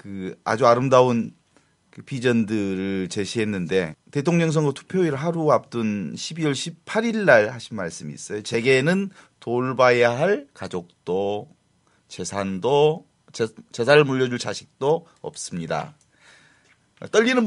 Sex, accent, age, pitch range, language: male, native, 30-49, 115-170 Hz, Korean